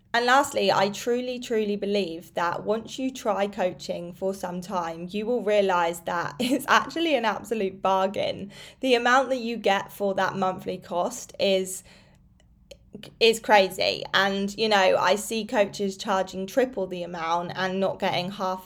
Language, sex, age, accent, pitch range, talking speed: English, female, 20-39, British, 185-220 Hz, 160 wpm